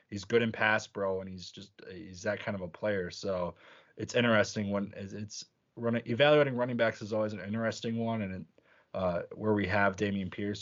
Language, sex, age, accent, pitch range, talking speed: English, male, 20-39, American, 100-130 Hz, 200 wpm